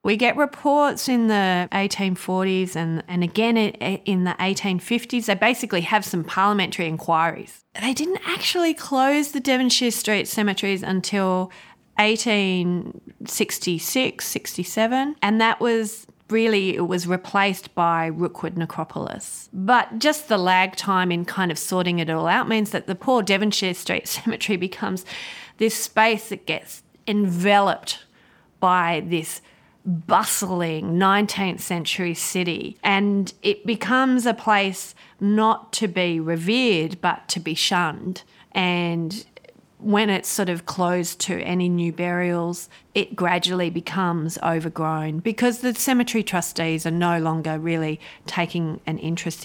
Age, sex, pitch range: 30-49, female, 170-210 Hz